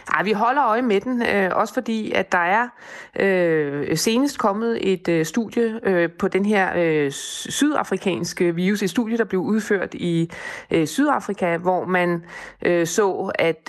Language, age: Danish, 20-39